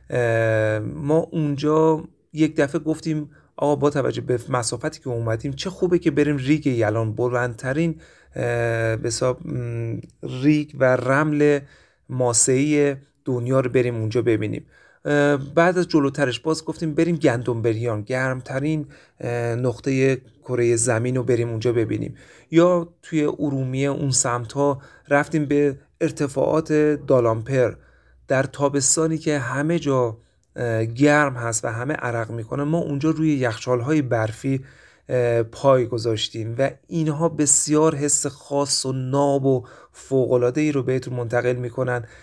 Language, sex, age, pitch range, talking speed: Persian, male, 40-59, 120-150 Hz, 120 wpm